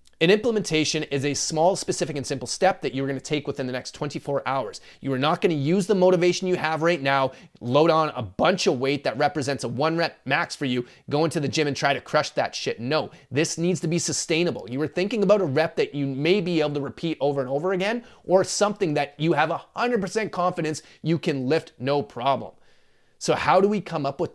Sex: male